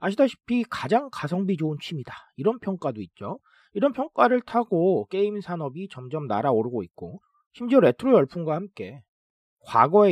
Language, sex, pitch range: Korean, male, 130-205 Hz